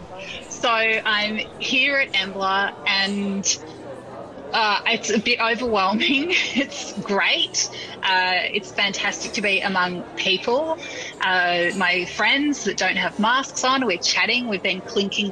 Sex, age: female, 20-39